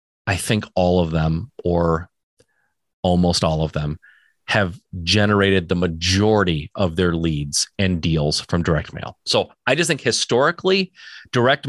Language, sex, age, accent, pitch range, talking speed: English, male, 30-49, American, 90-120 Hz, 145 wpm